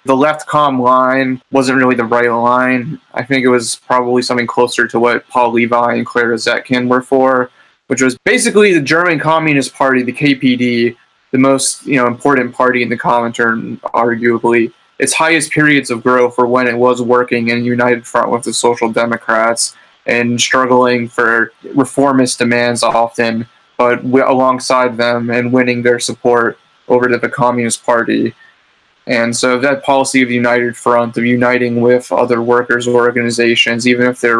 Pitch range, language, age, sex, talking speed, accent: 120-130 Hz, English, 20-39, male, 170 wpm, American